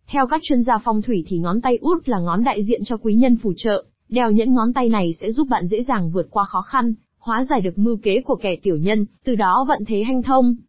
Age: 20-39